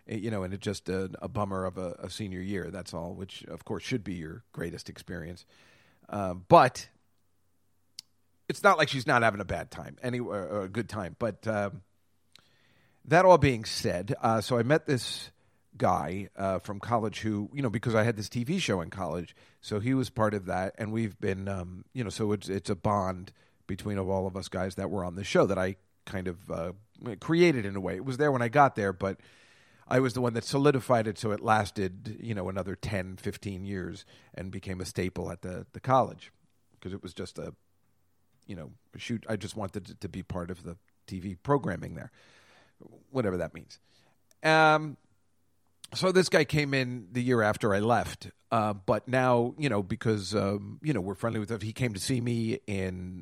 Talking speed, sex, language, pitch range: 210 wpm, male, English, 95-130 Hz